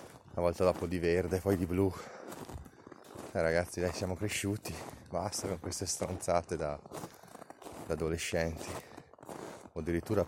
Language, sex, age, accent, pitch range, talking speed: Italian, male, 30-49, native, 90-105 Hz, 130 wpm